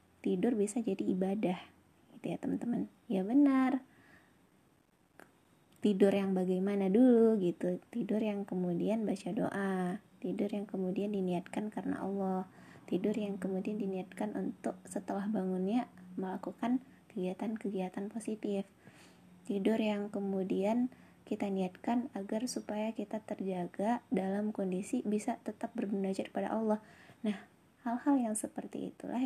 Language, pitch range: Indonesian, 195-235 Hz